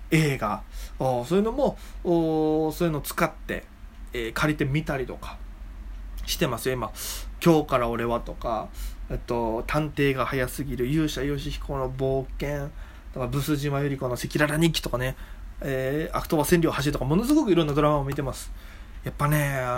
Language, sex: Japanese, male